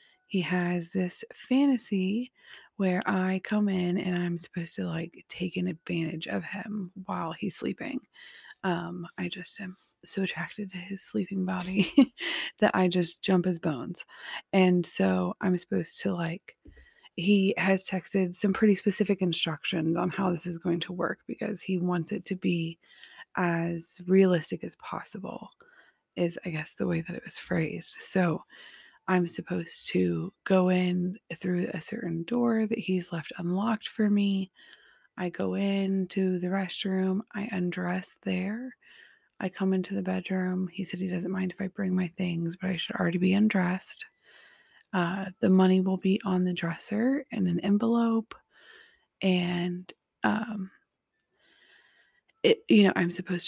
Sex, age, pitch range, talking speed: female, 20-39, 175-205 Hz, 155 wpm